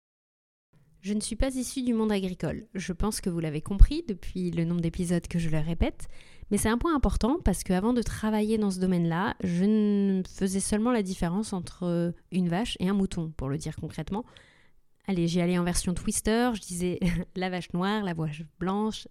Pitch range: 170-215 Hz